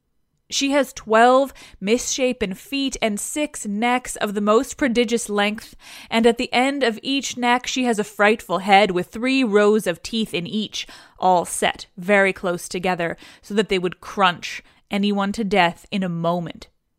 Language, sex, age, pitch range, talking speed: English, female, 20-39, 195-250 Hz, 170 wpm